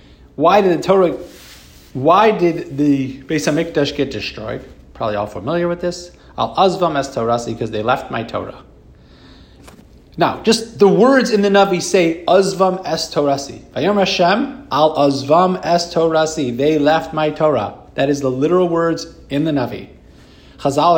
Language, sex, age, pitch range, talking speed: English, male, 30-49, 135-190 Hz, 140 wpm